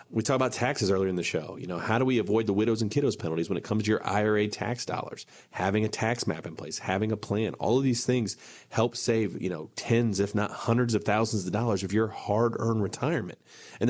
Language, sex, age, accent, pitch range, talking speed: English, male, 30-49, American, 100-125 Hz, 240 wpm